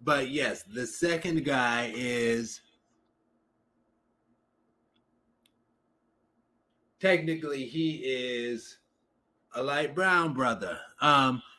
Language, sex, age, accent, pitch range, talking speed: English, male, 30-49, American, 115-145 Hz, 70 wpm